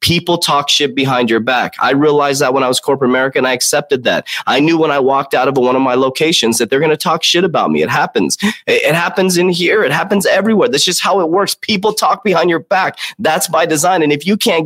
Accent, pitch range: American, 130-170 Hz